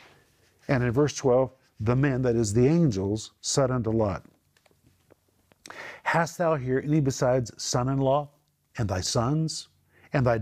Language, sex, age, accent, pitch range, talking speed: English, male, 50-69, American, 125-165 Hz, 140 wpm